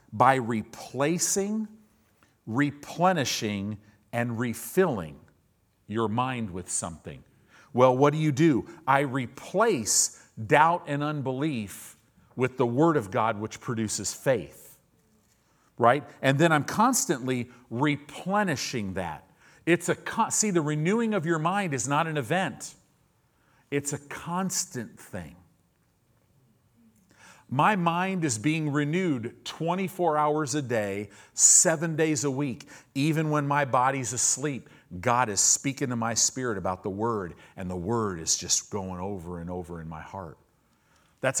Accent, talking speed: American, 130 wpm